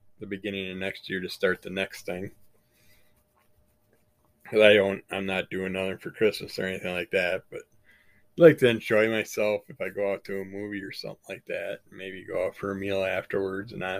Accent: American